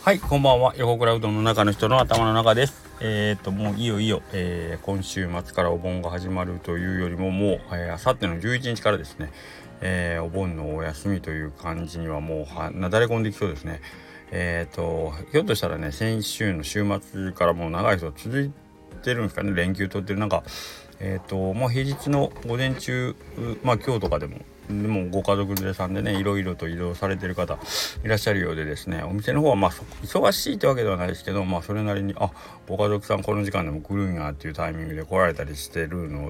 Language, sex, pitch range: Japanese, male, 85-110 Hz